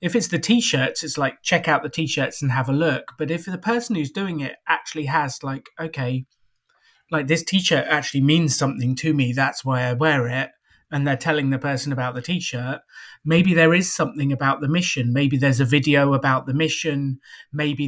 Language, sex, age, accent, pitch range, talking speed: English, male, 30-49, British, 135-160 Hz, 205 wpm